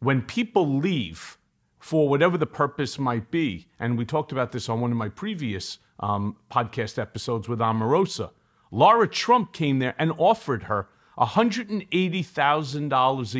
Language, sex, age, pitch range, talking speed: English, male, 40-59, 130-180 Hz, 145 wpm